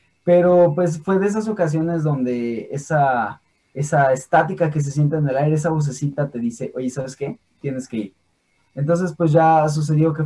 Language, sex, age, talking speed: Spanish, male, 20-39, 180 wpm